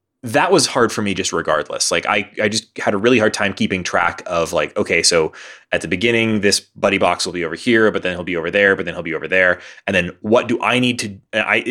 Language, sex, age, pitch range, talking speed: English, male, 20-39, 100-130 Hz, 265 wpm